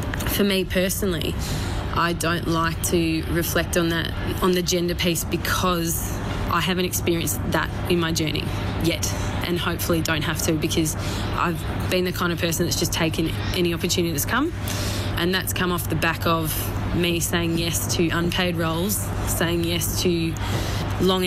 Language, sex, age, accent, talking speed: English, female, 20-39, Australian, 165 wpm